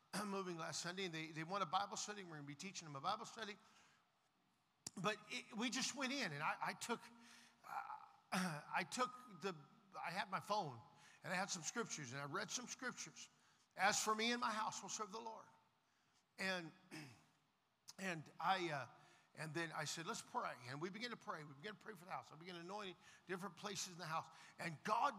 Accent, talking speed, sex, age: American, 210 wpm, male, 50-69